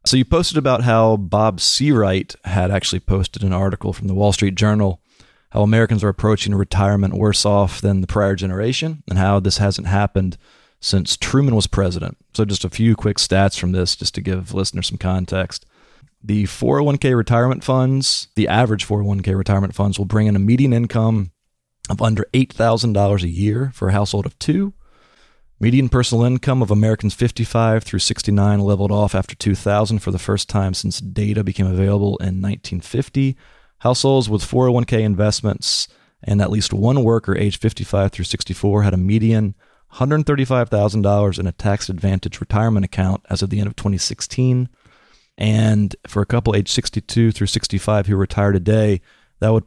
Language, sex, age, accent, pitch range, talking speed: English, male, 30-49, American, 95-115 Hz, 170 wpm